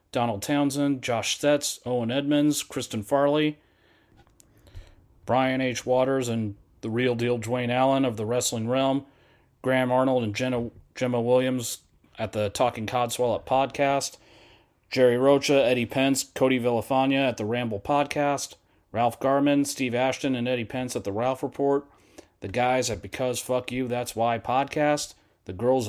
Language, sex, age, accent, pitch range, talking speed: English, male, 30-49, American, 115-140 Hz, 150 wpm